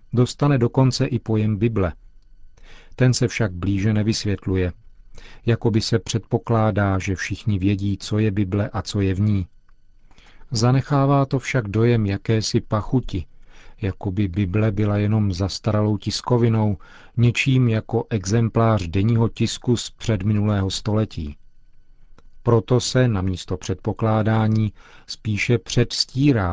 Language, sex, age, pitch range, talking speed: Czech, male, 50-69, 100-115 Hz, 120 wpm